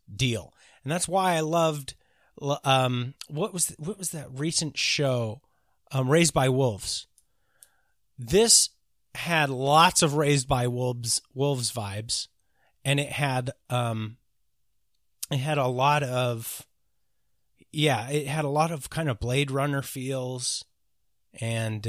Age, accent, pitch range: 30-49, American, 120-160 Hz